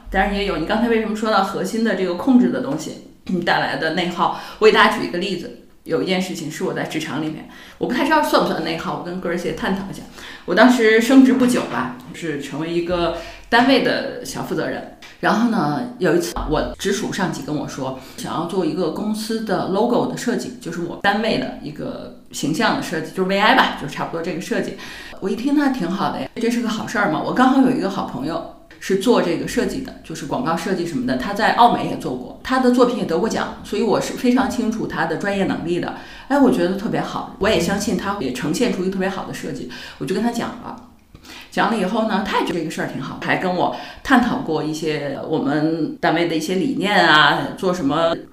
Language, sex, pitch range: Chinese, female, 175-235 Hz